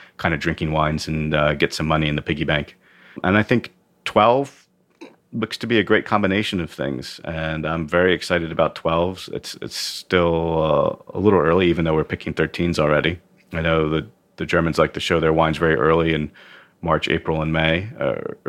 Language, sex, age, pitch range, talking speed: English, male, 30-49, 80-105 Hz, 200 wpm